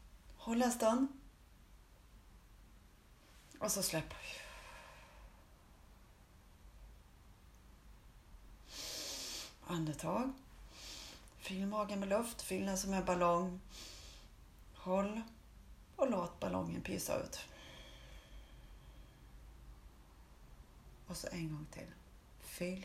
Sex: female